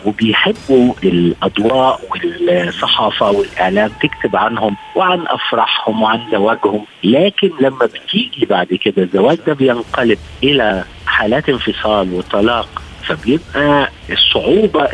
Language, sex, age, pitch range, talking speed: Arabic, male, 50-69, 120-180 Hz, 95 wpm